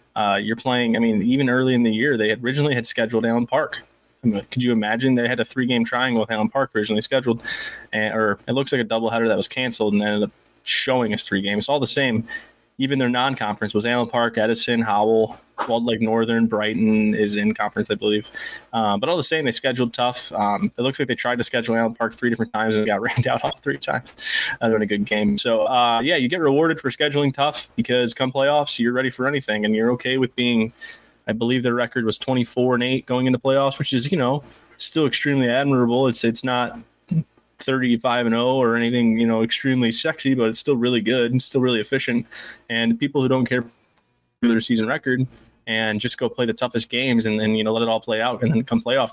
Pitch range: 110-130 Hz